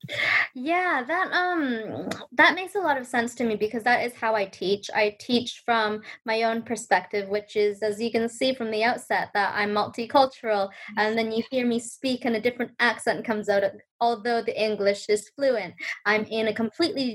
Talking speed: 195 wpm